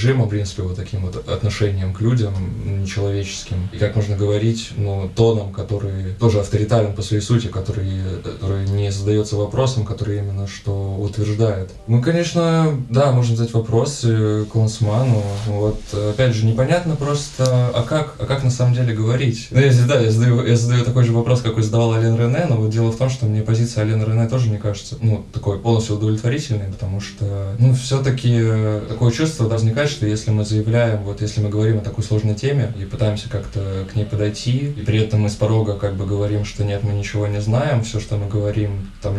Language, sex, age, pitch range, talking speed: Russian, male, 20-39, 105-115 Hz, 200 wpm